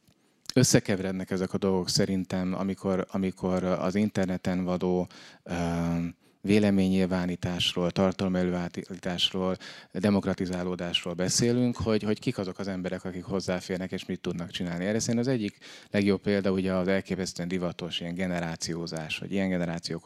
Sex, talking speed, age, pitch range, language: male, 125 wpm, 30-49, 85-100 Hz, Hungarian